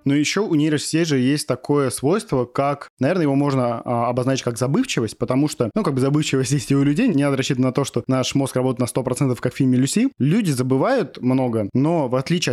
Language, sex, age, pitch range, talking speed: Russian, male, 20-39, 130-155 Hz, 215 wpm